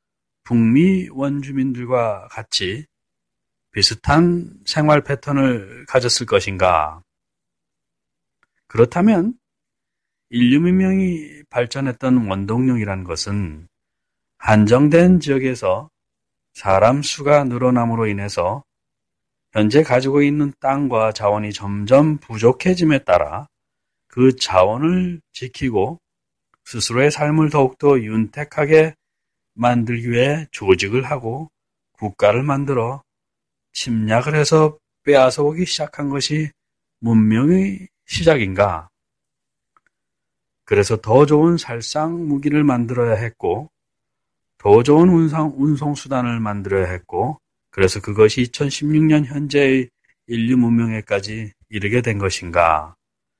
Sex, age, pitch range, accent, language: male, 40-59, 110-150 Hz, native, Korean